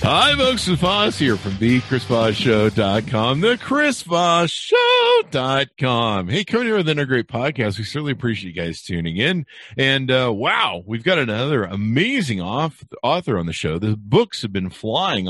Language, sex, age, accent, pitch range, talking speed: English, male, 50-69, American, 90-135 Hz, 175 wpm